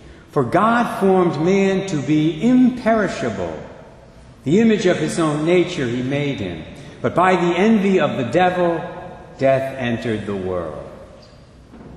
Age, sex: 60-79, male